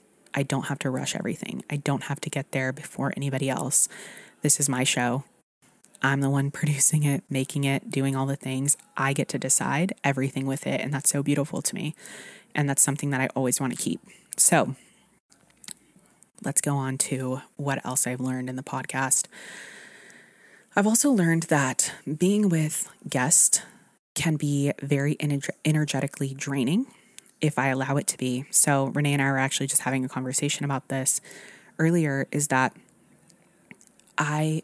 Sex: female